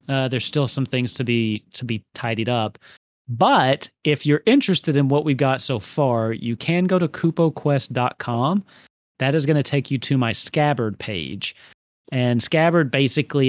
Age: 30-49